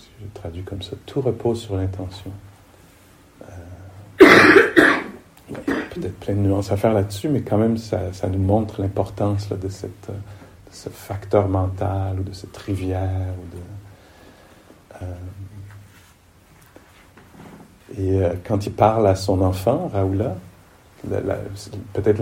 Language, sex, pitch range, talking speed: English, male, 95-105 Hz, 135 wpm